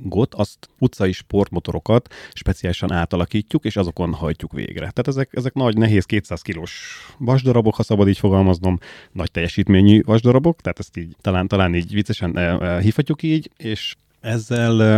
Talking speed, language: 145 wpm, Hungarian